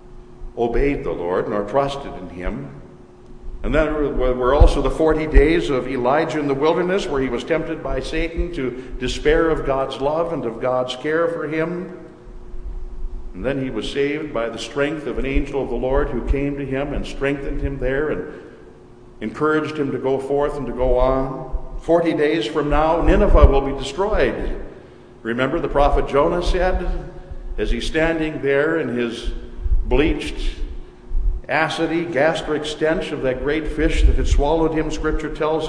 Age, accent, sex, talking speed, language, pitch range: 60-79, American, male, 170 wpm, English, 125-155 Hz